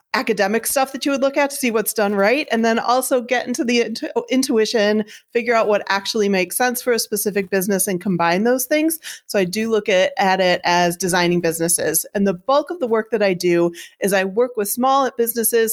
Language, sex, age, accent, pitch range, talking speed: English, female, 30-49, American, 190-245 Hz, 220 wpm